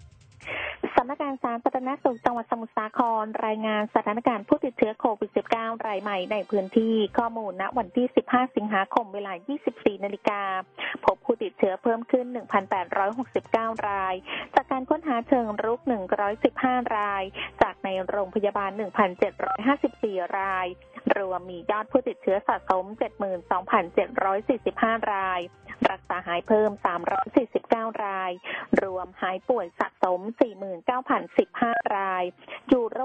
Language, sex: Thai, female